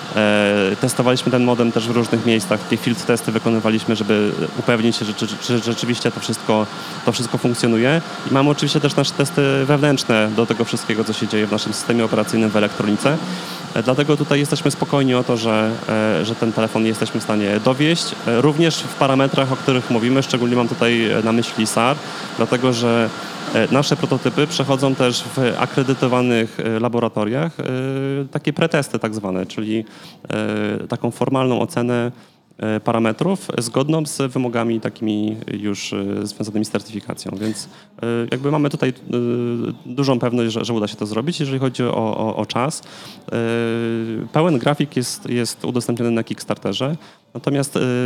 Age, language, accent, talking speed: 30-49, Polish, native, 145 wpm